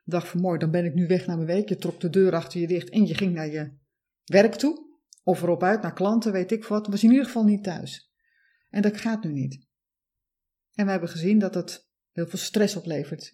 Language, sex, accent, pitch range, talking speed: Dutch, female, Dutch, 175-235 Hz, 250 wpm